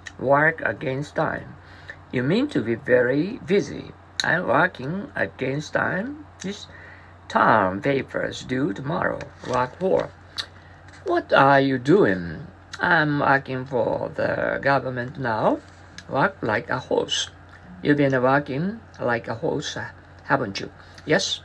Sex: male